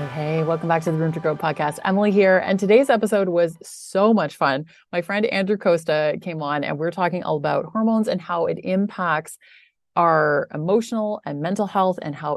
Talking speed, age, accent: 200 wpm, 30-49, American